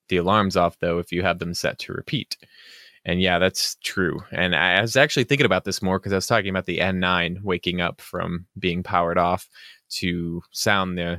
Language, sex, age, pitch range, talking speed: English, male, 20-39, 85-95 Hz, 215 wpm